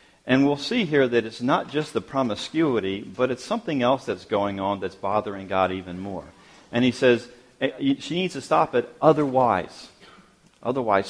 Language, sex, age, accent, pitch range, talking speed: English, male, 40-59, American, 100-125 Hz, 175 wpm